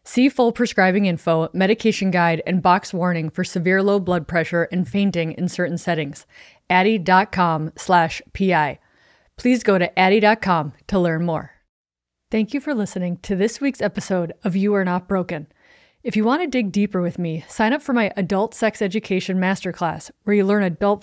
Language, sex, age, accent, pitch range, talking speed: English, female, 30-49, American, 180-215 Hz, 175 wpm